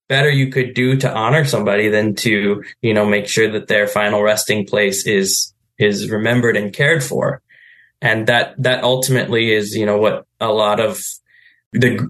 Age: 10-29